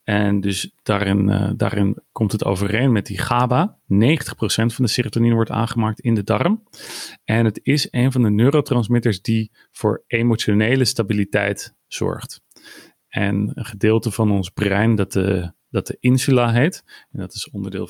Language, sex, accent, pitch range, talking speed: Dutch, male, Dutch, 100-120 Hz, 160 wpm